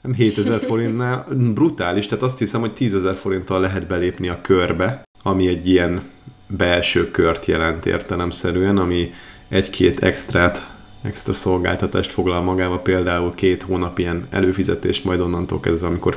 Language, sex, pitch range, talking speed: Hungarian, male, 85-105 Hz, 135 wpm